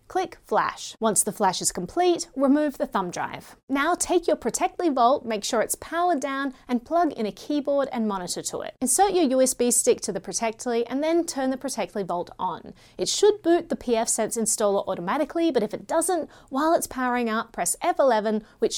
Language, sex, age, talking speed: English, female, 30-49, 200 wpm